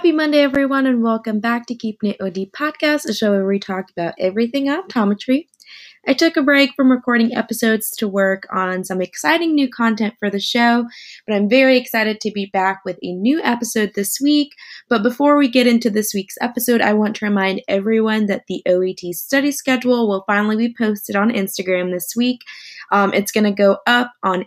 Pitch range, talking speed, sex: 195-255 Hz, 200 wpm, female